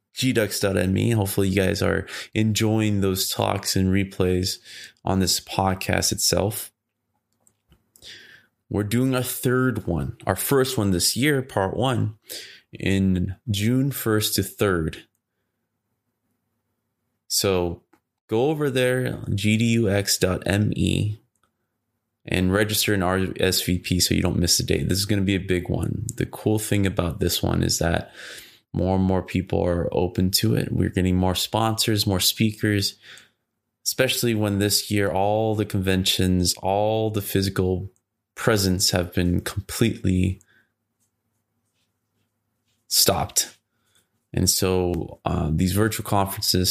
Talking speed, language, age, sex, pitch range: 125 wpm, English, 20-39, male, 95-115 Hz